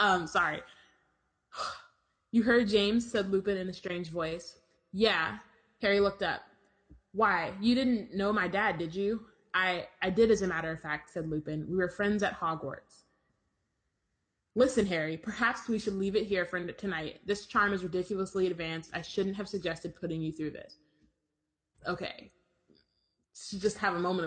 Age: 20-39